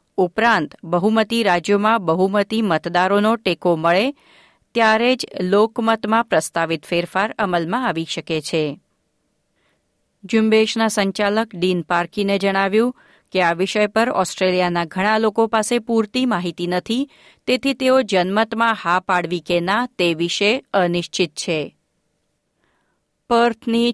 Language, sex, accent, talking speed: Gujarati, female, native, 110 wpm